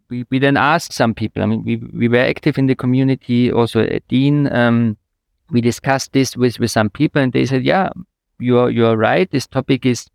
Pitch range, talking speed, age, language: 110-135 Hz, 215 wpm, 50-69, English